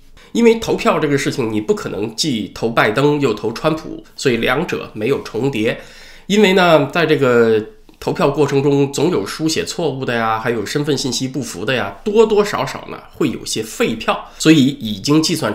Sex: male